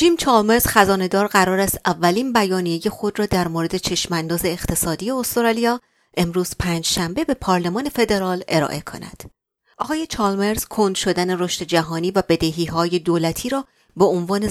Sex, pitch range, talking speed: female, 170-225 Hz, 145 wpm